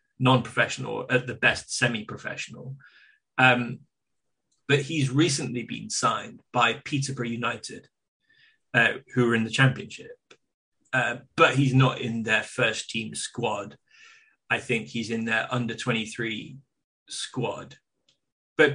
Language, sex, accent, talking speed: English, male, British, 120 wpm